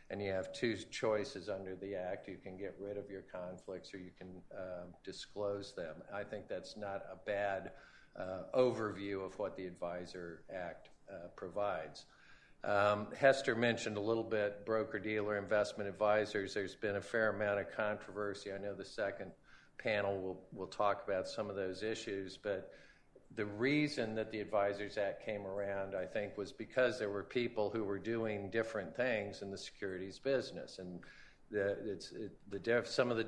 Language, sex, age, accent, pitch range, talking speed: English, male, 50-69, American, 95-110 Hz, 170 wpm